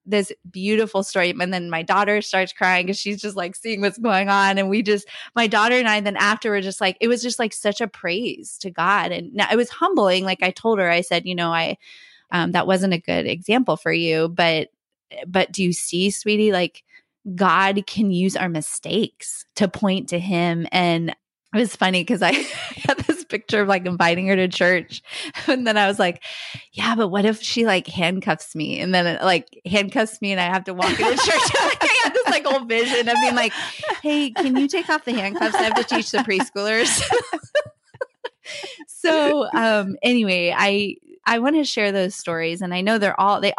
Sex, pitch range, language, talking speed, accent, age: female, 180-230 Hz, English, 210 wpm, American, 20-39